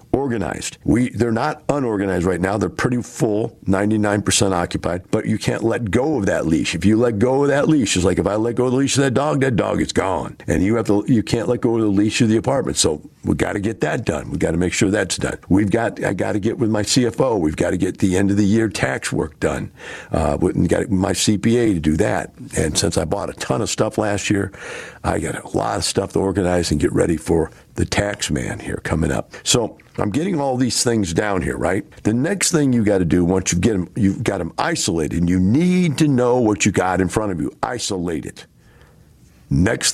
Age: 50-69